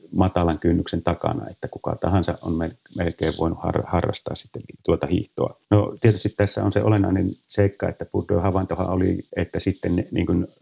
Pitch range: 85-100 Hz